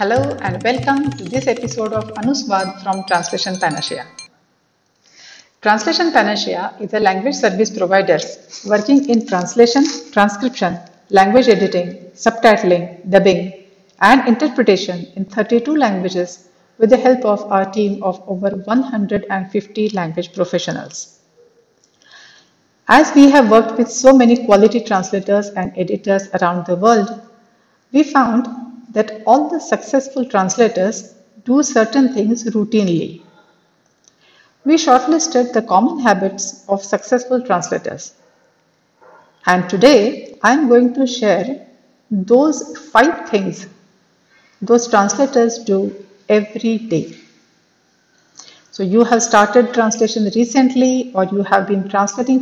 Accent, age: native, 60-79